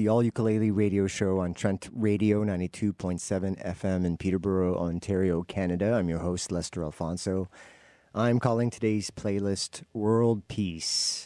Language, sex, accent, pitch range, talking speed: English, male, American, 85-115 Hz, 135 wpm